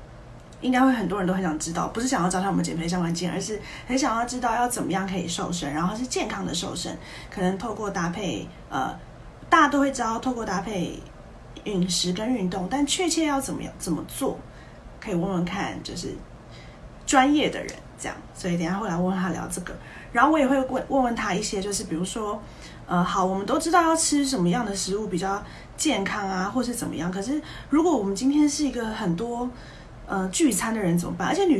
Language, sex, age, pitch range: Chinese, female, 30-49, 180-255 Hz